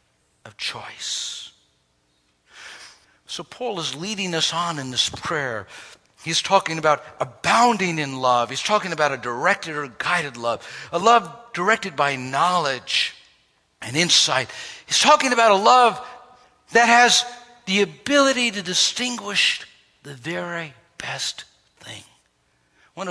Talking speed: 125 wpm